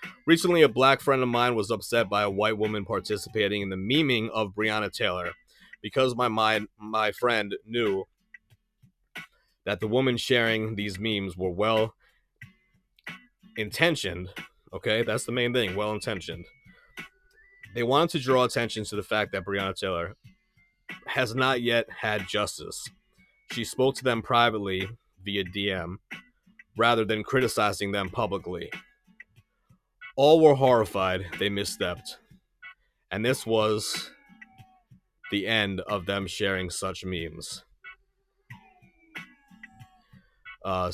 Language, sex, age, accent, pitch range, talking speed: English, male, 30-49, American, 95-120 Hz, 120 wpm